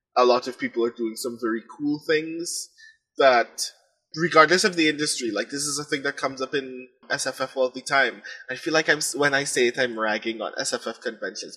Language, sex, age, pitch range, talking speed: English, male, 20-39, 125-170 Hz, 215 wpm